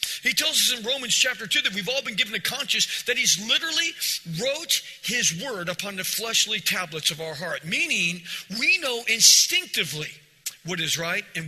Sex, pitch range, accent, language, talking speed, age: male, 170-250 Hz, American, English, 185 wpm, 40-59